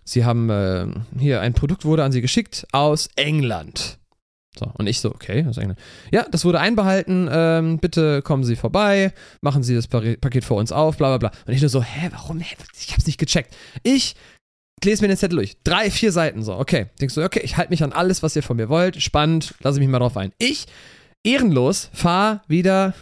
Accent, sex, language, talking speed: German, male, German, 220 wpm